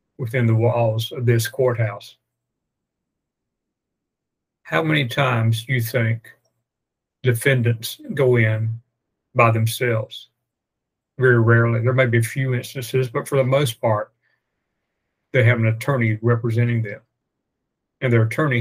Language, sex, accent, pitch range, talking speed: English, male, American, 115-125 Hz, 125 wpm